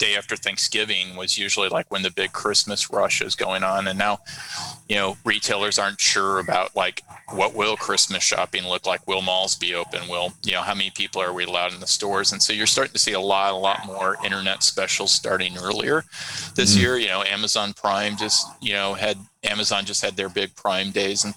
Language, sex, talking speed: English, male, 220 wpm